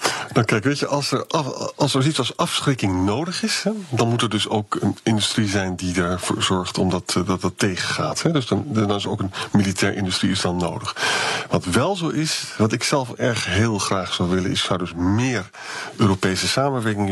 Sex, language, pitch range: male, Dutch, 95-120 Hz